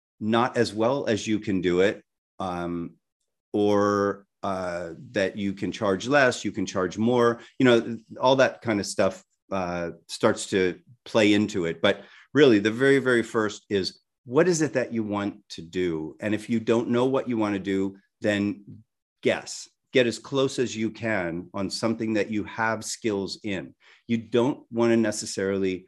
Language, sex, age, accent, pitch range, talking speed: English, male, 40-59, American, 95-115 Hz, 180 wpm